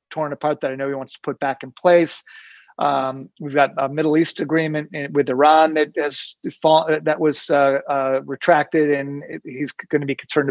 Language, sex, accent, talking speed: English, male, American, 205 wpm